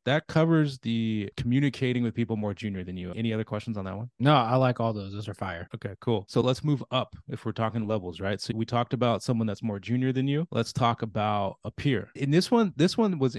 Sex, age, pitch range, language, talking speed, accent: male, 20-39, 105-130 Hz, English, 250 wpm, American